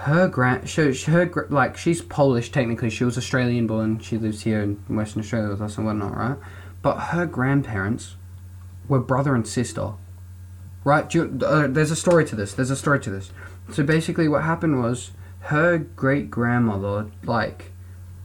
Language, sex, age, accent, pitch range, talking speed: English, male, 20-39, Australian, 105-135 Hz, 155 wpm